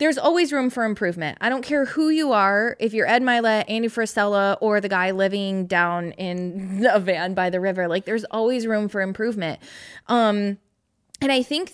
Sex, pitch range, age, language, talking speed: female, 205-255 Hz, 20-39, English, 195 wpm